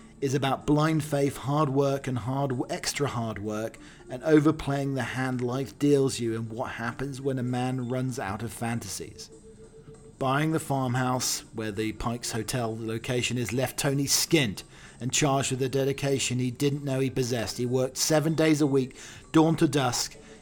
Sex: male